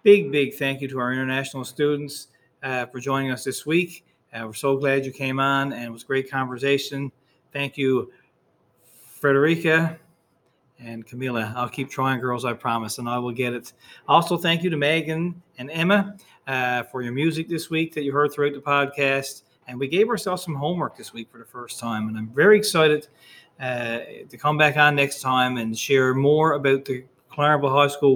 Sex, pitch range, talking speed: male, 130-160 Hz, 200 wpm